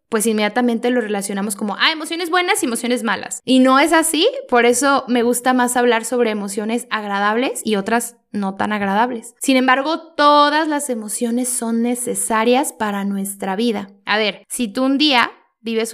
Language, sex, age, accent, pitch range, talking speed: Spanish, female, 10-29, Mexican, 210-255 Hz, 175 wpm